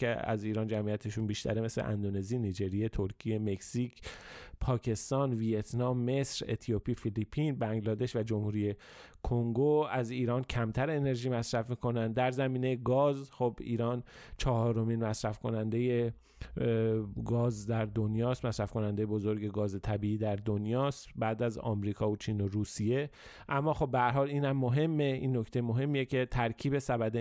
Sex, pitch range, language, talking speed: male, 110-130 Hz, Persian, 135 wpm